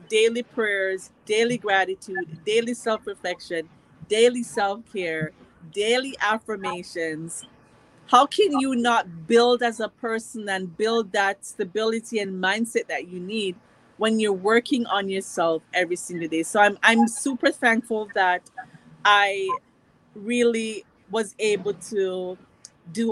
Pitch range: 190-225 Hz